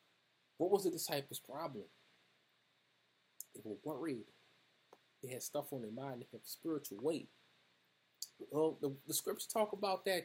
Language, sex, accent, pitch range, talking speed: English, male, American, 130-160 Hz, 140 wpm